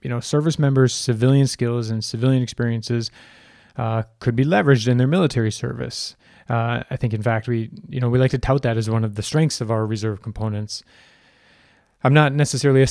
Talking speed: 200 wpm